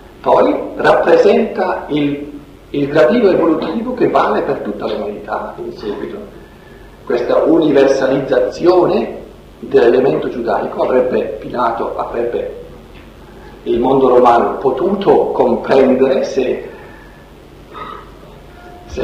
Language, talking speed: Italian, 85 wpm